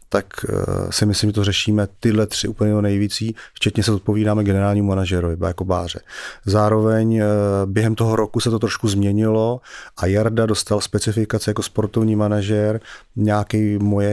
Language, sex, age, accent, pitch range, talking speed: English, male, 30-49, Czech, 100-105 Hz, 145 wpm